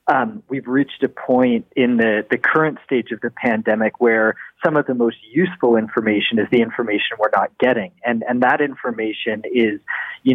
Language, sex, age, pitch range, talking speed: English, male, 40-59, 110-135 Hz, 185 wpm